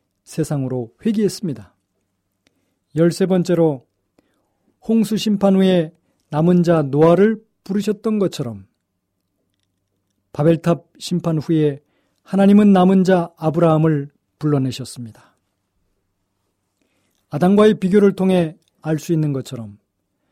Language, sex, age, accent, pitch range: Korean, male, 40-59, native, 125-190 Hz